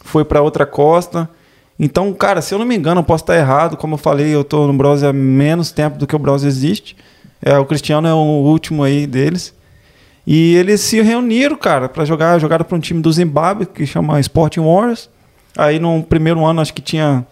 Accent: Brazilian